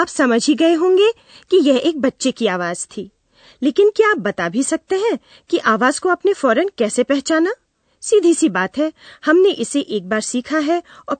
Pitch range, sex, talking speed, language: 210-350 Hz, female, 200 wpm, Hindi